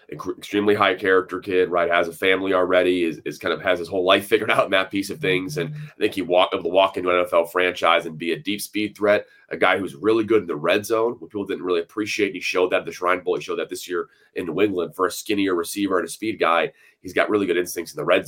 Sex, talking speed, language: male, 280 wpm, English